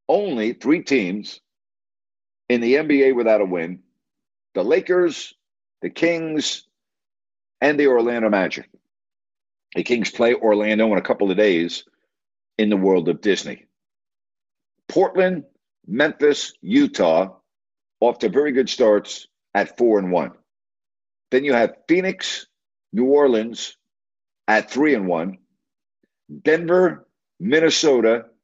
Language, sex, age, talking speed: English, male, 50-69, 115 wpm